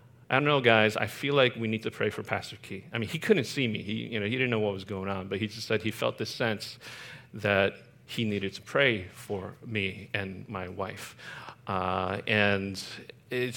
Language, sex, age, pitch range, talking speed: English, male, 40-59, 100-125 Hz, 225 wpm